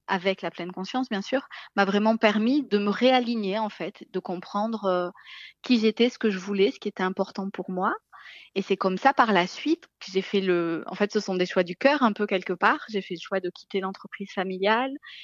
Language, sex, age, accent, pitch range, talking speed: French, female, 20-39, French, 185-225 Hz, 235 wpm